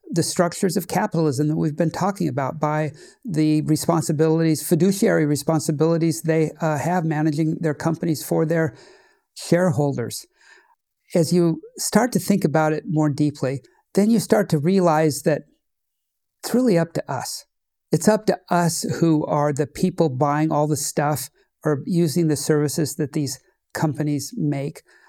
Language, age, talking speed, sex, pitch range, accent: English, 50-69, 150 wpm, male, 150-175 Hz, American